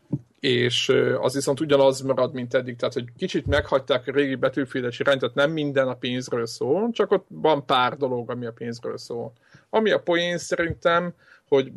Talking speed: 175 wpm